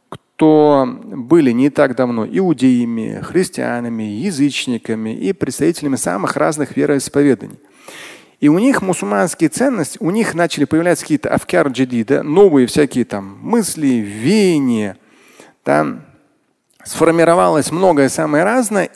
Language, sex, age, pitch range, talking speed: Russian, male, 40-59, 130-190 Hz, 115 wpm